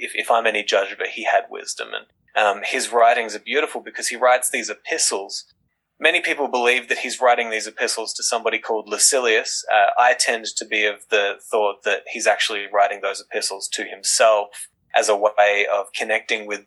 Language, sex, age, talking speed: English, male, 20-39, 200 wpm